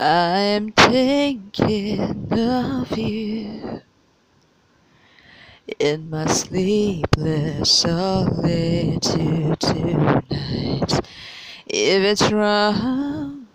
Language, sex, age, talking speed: English, female, 20-39, 55 wpm